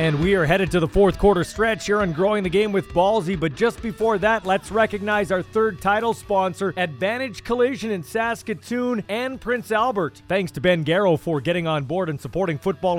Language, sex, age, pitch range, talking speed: English, male, 40-59, 165-225 Hz, 205 wpm